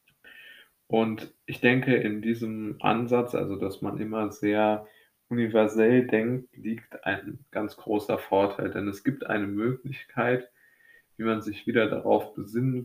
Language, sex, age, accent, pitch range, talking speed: German, male, 20-39, German, 105-120 Hz, 135 wpm